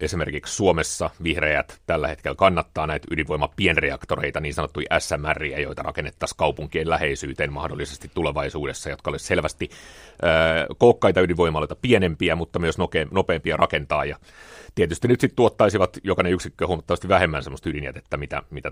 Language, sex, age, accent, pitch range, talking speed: Finnish, male, 30-49, native, 80-100 Hz, 135 wpm